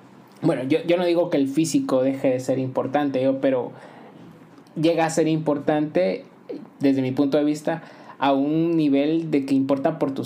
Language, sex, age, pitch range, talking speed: Spanish, male, 20-39, 135-165 Hz, 175 wpm